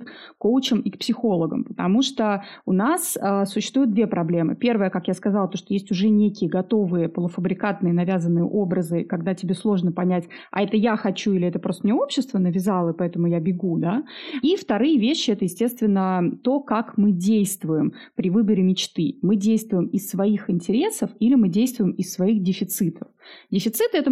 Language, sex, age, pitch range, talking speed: Russian, female, 30-49, 180-230 Hz, 175 wpm